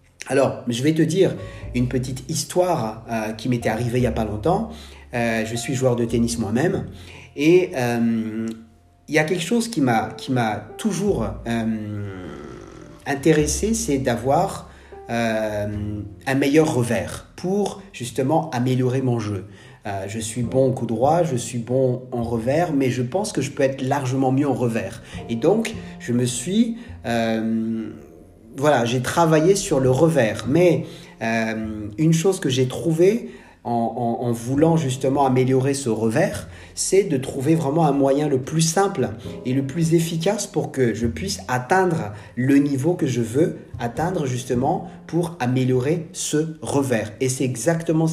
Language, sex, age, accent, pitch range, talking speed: French, male, 40-59, French, 115-155 Hz, 160 wpm